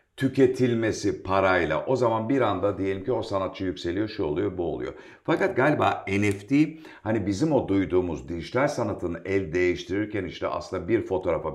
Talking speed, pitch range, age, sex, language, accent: 155 wpm, 100-145 Hz, 50-69, male, Turkish, native